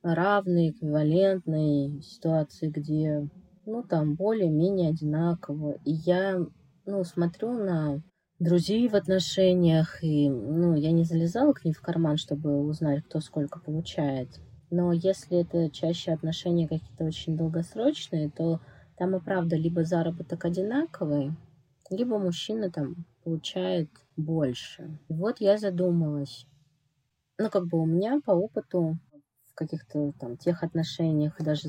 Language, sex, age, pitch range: Russian, female, 20-39, 155-185 Hz